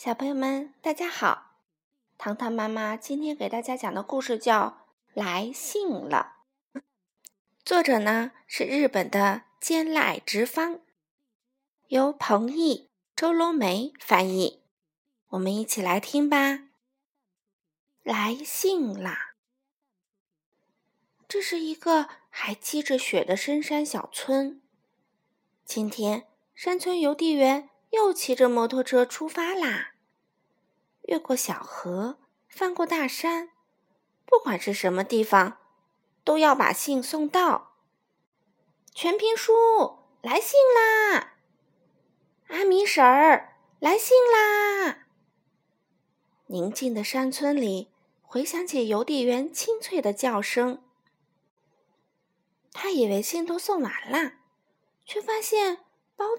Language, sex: Chinese, female